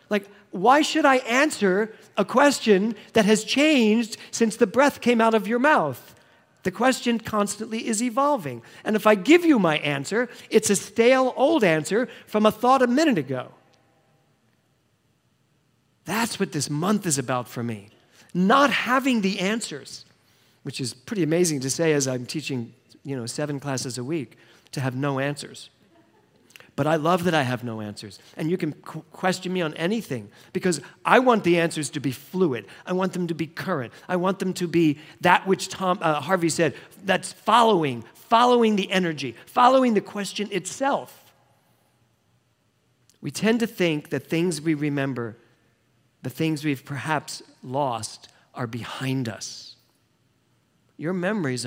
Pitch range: 135-215 Hz